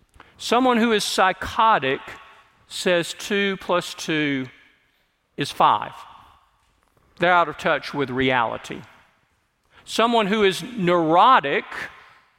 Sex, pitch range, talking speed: male, 170-215 Hz, 95 wpm